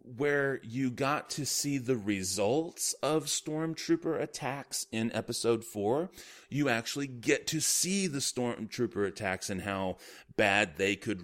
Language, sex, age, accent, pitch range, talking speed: English, male, 30-49, American, 100-145 Hz, 140 wpm